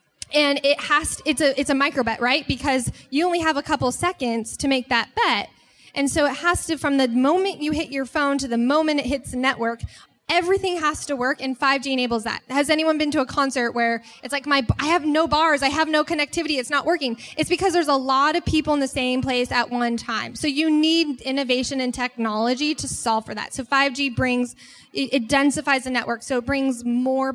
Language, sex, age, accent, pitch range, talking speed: English, female, 10-29, American, 245-295 Hz, 225 wpm